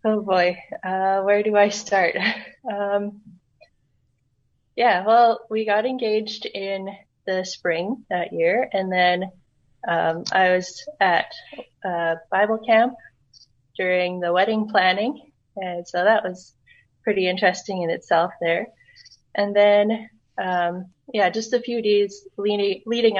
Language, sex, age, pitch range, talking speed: English, female, 20-39, 180-215 Hz, 125 wpm